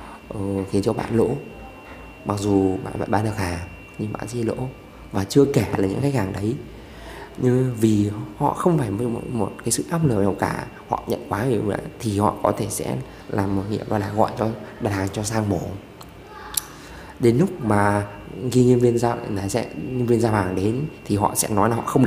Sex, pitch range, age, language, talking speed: male, 100-115 Hz, 20-39, Vietnamese, 215 wpm